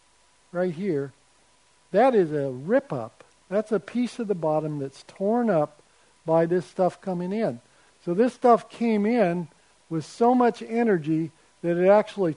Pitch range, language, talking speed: 155-195 Hz, Danish, 155 wpm